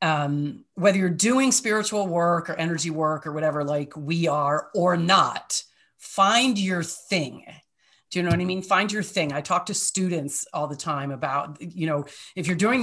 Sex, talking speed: female, 190 wpm